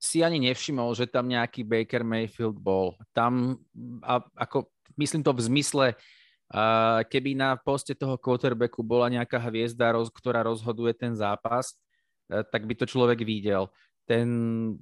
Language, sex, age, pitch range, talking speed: Slovak, male, 20-39, 120-150 Hz, 140 wpm